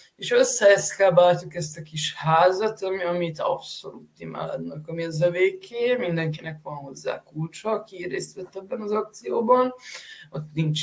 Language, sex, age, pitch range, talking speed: Hungarian, female, 20-39, 150-185 Hz, 135 wpm